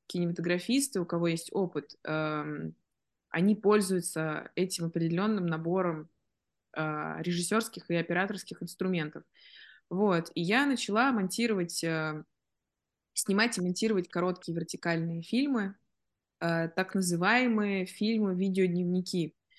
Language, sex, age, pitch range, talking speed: Russian, female, 20-39, 165-195 Hz, 85 wpm